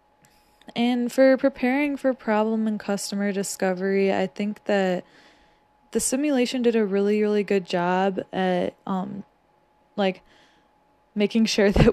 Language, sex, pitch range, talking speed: English, female, 180-220 Hz, 125 wpm